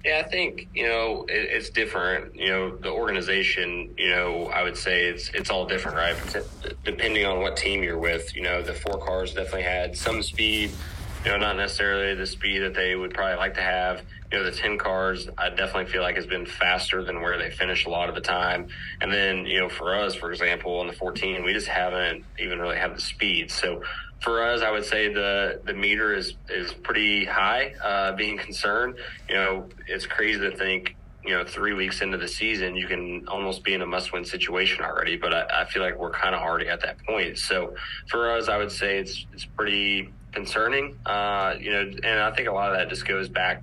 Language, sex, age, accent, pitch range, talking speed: English, male, 20-39, American, 90-100 Hz, 225 wpm